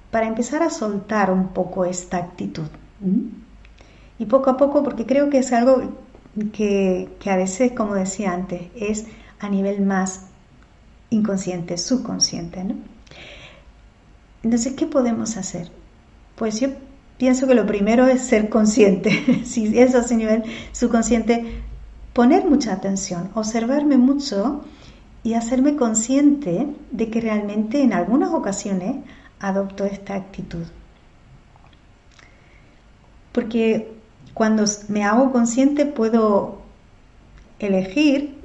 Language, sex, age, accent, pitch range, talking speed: Spanish, female, 50-69, American, 195-255 Hz, 115 wpm